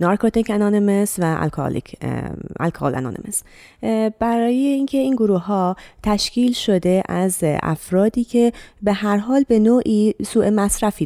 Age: 30-49